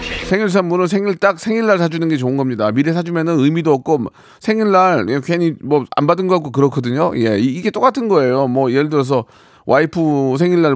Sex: male